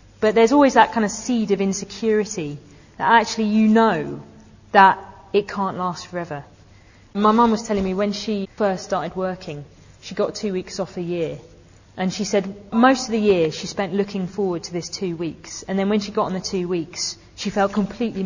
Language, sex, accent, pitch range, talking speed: English, female, British, 175-220 Hz, 205 wpm